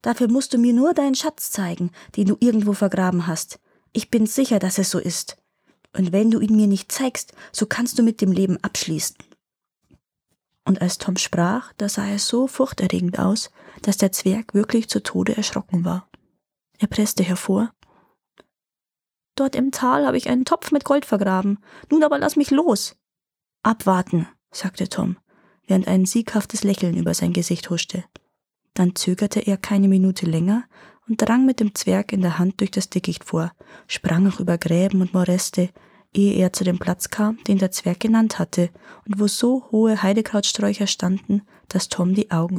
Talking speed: 180 wpm